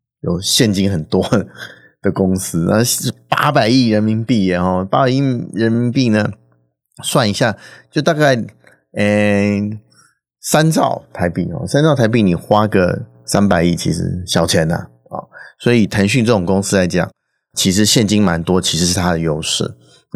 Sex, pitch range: male, 90-110 Hz